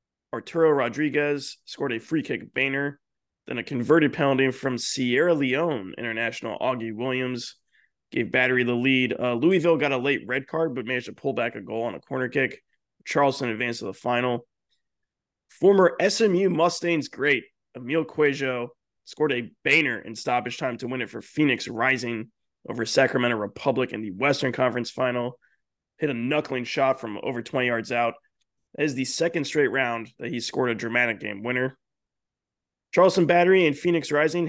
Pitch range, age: 120-155 Hz, 20-39